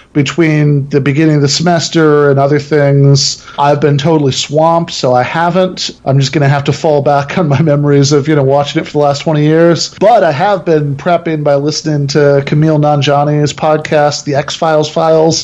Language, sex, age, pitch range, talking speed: English, male, 40-59, 140-160 Hz, 200 wpm